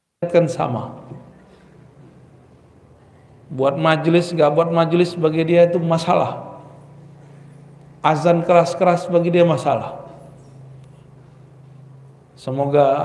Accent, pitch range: native, 135-160 Hz